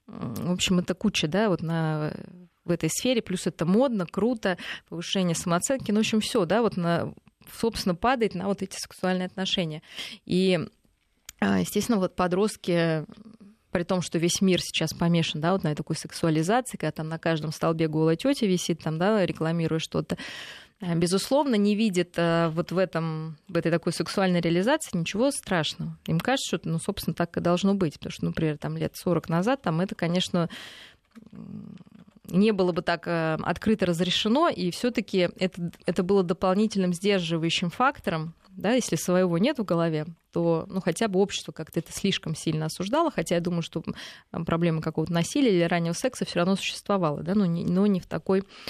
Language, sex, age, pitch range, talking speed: Russian, female, 20-39, 165-200 Hz, 175 wpm